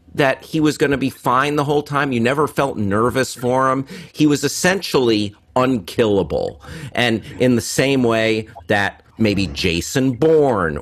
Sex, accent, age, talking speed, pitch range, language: male, American, 40-59, 160 wpm, 110-145 Hz, English